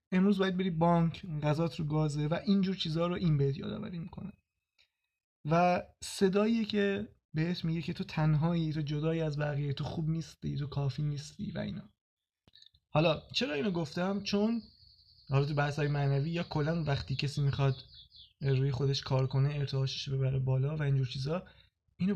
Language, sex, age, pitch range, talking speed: Persian, male, 20-39, 140-180 Hz, 165 wpm